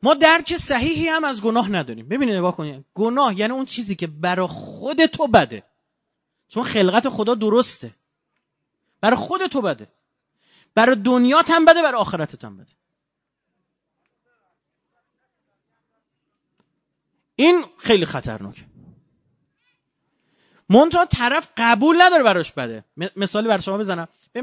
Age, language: 30-49, Persian